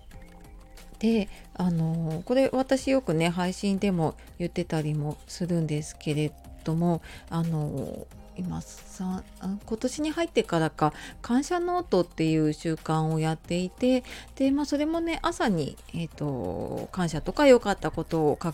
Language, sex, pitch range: Japanese, female, 160-245 Hz